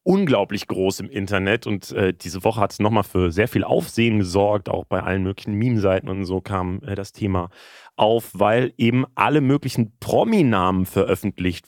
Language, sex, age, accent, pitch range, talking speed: German, male, 30-49, German, 100-125 Hz, 175 wpm